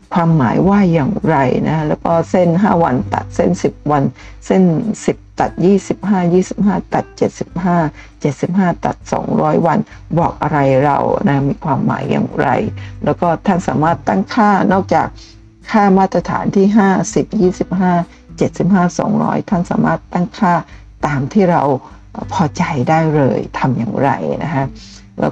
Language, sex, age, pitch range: Thai, female, 60-79, 135-195 Hz